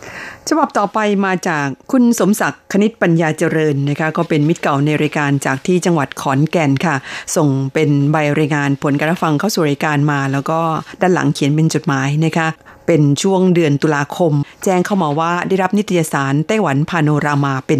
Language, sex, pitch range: Thai, female, 150-180 Hz